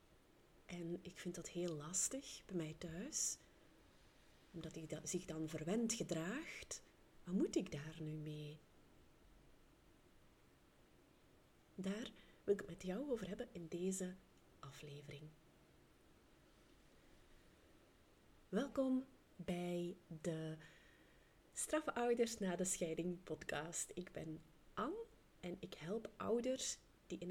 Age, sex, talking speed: 30-49, female, 110 wpm